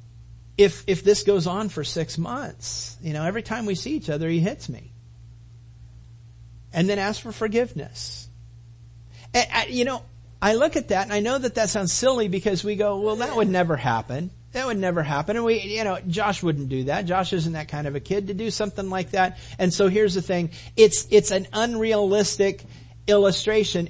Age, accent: 50-69, American